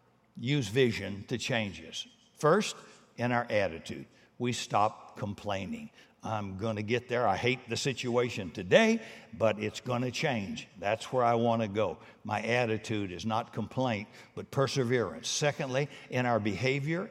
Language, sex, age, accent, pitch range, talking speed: English, male, 60-79, American, 115-160 Hz, 155 wpm